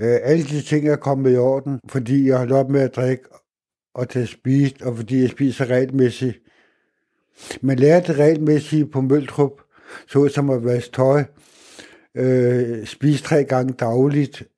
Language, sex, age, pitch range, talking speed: Danish, male, 60-79, 125-145 Hz, 160 wpm